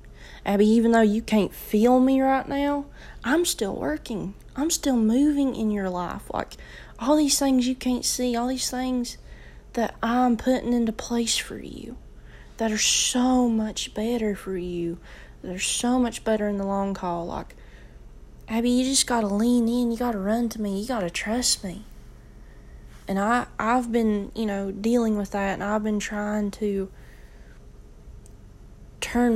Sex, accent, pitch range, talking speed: female, American, 190-250 Hz, 170 wpm